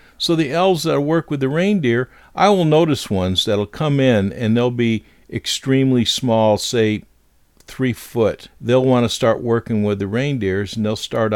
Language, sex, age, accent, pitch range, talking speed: English, male, 50-69, American, 105-135 Hz, 180 wpm